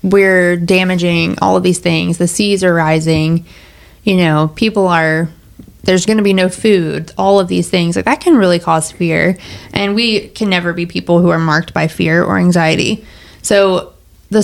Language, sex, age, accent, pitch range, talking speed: English, female, 20-39, American, 170-195 Hz, 185 wpm